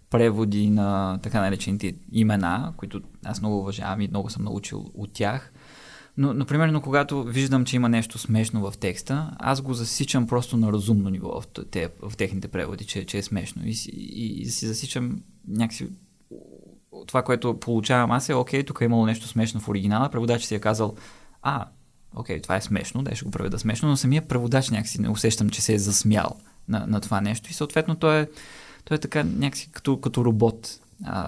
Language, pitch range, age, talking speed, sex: Bulgarian, 100-130 Hz, 20-39, 190 wpm, male